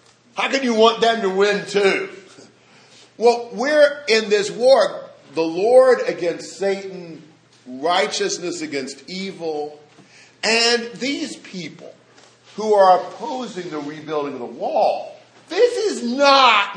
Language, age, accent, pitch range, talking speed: English, 50-69, American, 160-245 Hz, 120 wpm